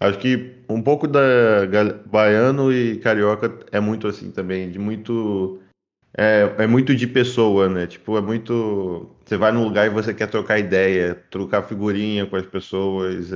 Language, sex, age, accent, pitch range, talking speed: English, male, 20-39, Brazilian, 100-125 Hz, 165 wpm